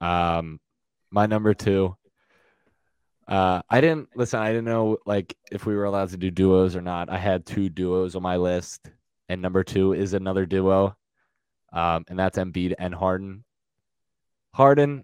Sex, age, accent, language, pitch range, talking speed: male, 20-39, American, English, 85-100 Hz, 165 wpm